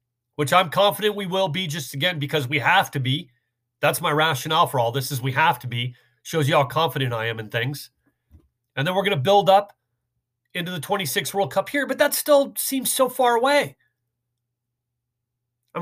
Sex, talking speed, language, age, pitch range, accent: male, 200 wpm, English, 40-59, 125-205 Hz, American